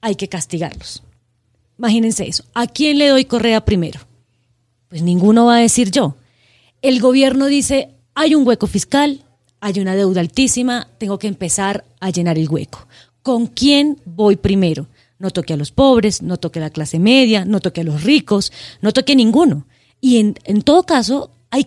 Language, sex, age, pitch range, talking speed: Spanish, female, 30-49, 175-235 Hz, 180 wpm